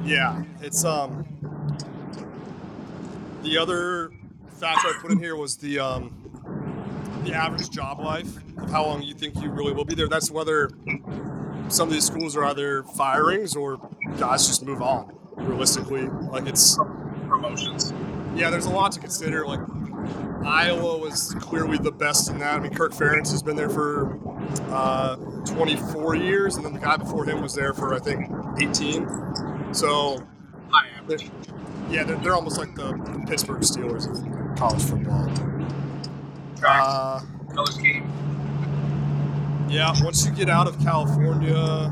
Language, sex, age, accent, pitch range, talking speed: English, male, 30-49, American, 145-160 Hz, 145 wpm